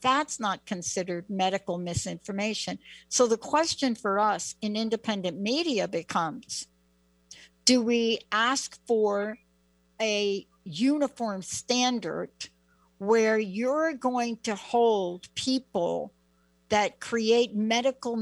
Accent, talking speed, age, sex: American, 100 wpm, 60-79, female